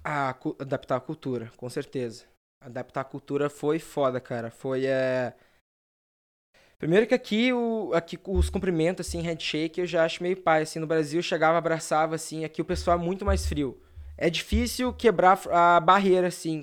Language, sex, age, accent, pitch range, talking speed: English, male, 20-39, Brazilian, 145-170 Hz, 175 wpm